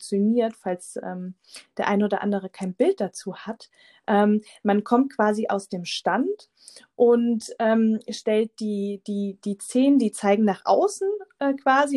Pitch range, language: 205-250 Hz, German